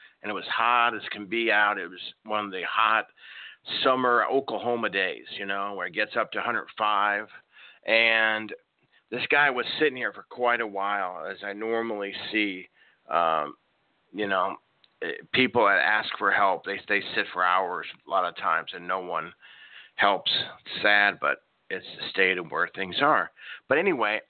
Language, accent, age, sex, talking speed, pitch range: English, American, 40-59, male, 180 wpm, 105-120 Hz